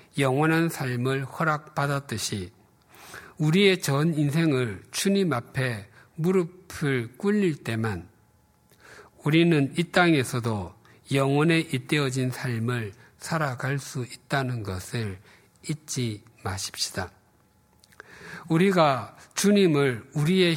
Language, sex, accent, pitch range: Korean, male, native, 115-160 Hz